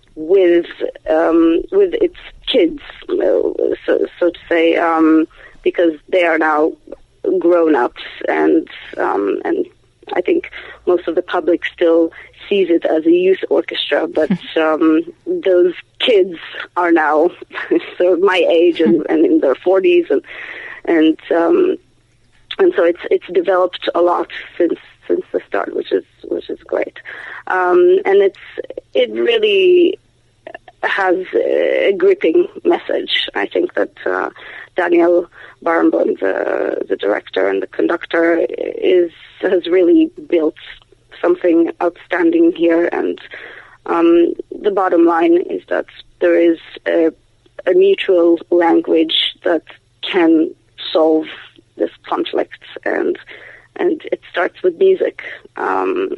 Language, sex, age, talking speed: English, female, 30-49, 125 wpm